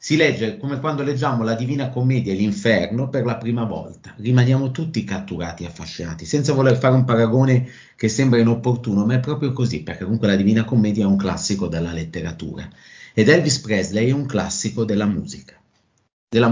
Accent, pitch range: native, 110-155 Hz